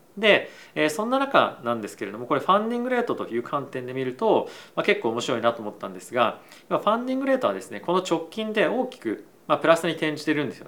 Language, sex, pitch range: Japanese, male, 150-220 Hz